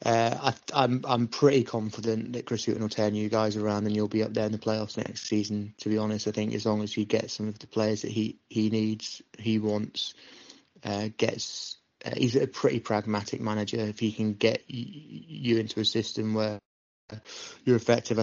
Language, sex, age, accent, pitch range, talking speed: English, male, 20-39, British, 105-115 Hz, 205 wpm